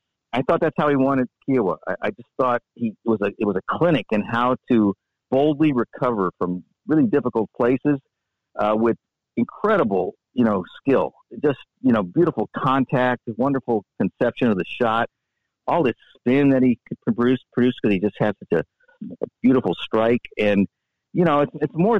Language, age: English, 50-69